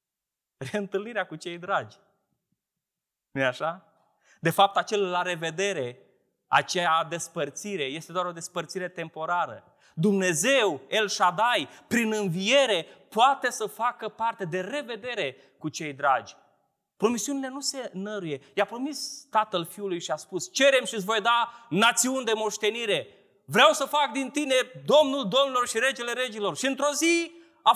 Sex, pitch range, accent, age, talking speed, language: male, 165-275 Hz, native, 20-39, 140 wpm, Romanian